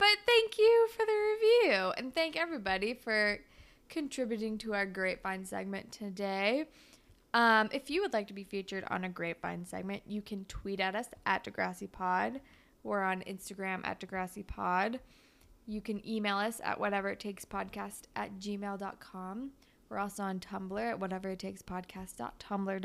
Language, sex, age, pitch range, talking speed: English, female, 20-39, 190-260 Hz, 135 wpm